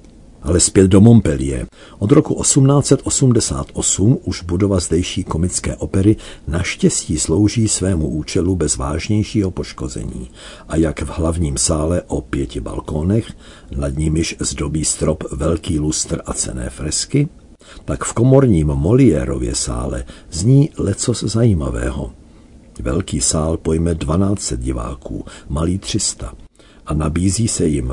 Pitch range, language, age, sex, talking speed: 75-100 Hz, Czech, 50-69, male, 120 wpm